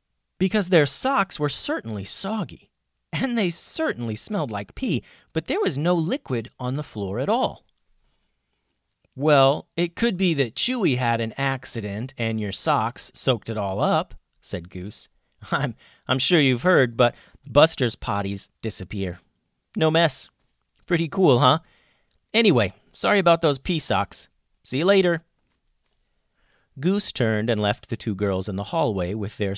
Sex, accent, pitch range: male, American, 100-165 Hz